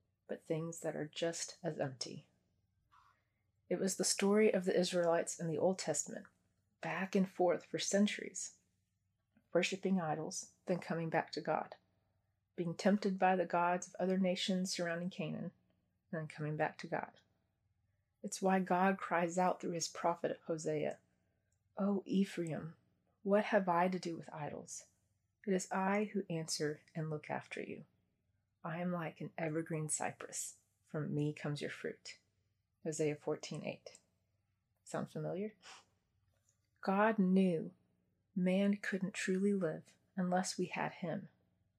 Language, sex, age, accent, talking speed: English, female, 30-49, American, 140 wpm